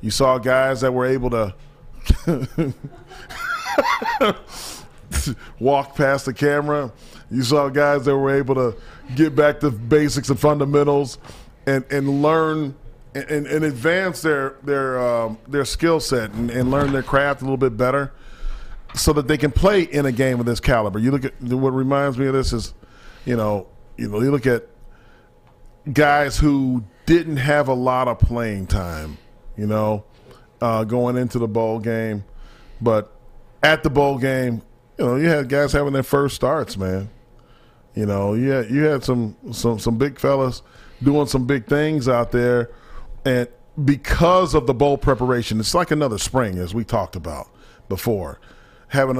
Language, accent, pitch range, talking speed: English, American, 120-145 Hz, 165 wpm